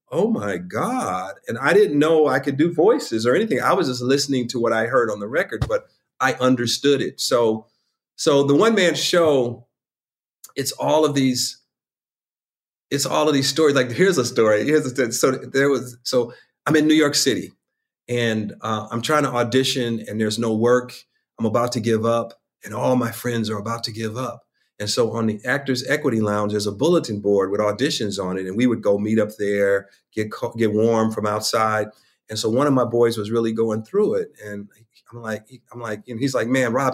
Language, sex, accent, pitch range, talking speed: English, male, American, 110-140 Hz, 210 wpm